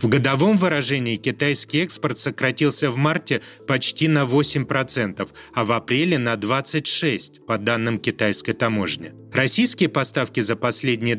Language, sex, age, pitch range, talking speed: Russian, male, 30-49, 110-150 Hz, 130 wpm